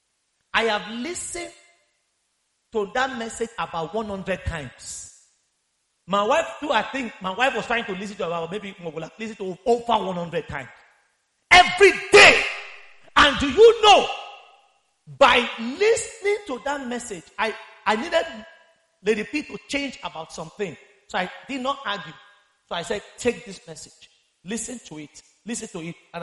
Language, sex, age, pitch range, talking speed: English, male, 40-59, 190-275 Hz, 160 wpm